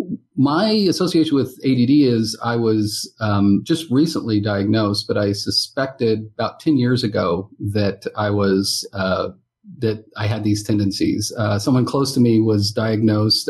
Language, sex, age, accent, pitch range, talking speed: English, male, 40-59, American, 110-140 Hz, 150 wpm